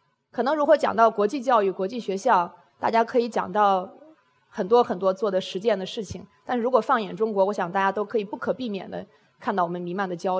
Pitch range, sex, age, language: 195-250 Hz, female, 20-39, Chinese